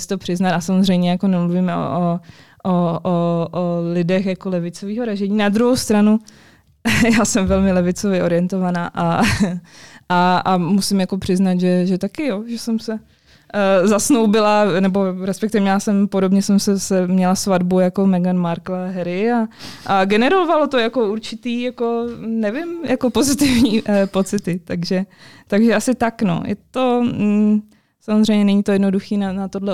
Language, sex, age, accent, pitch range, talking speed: Czech, female, 20-39, native, 175-205 Hz, 155 wpm